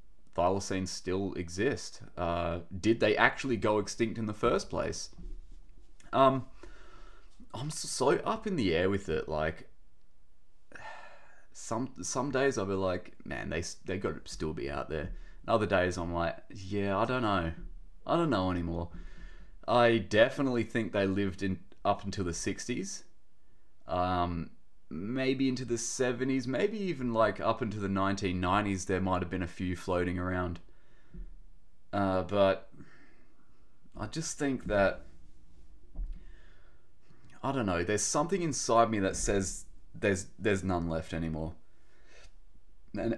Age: 30-49